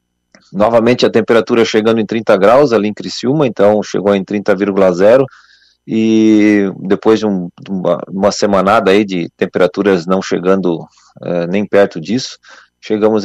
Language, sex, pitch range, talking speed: Portuguese, male, 95-110 Hz, 145 wpm